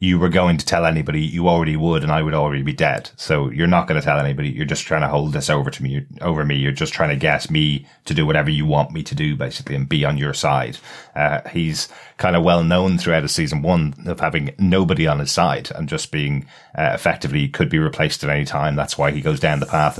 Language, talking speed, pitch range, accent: English, 260 wpm, 70-90 Hz, British